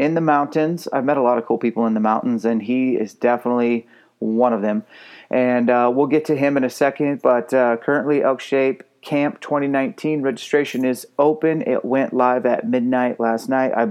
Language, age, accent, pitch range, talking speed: English, 30-49, American, 120-140 Hz, 205 wpm